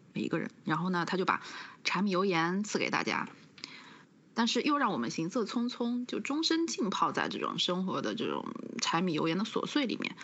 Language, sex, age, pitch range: Chinese, female, 20-39, 195-280 Hz